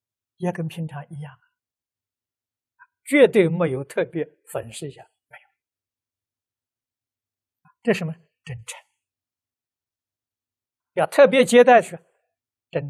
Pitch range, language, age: 115-180 Hz, Chinese, 60-79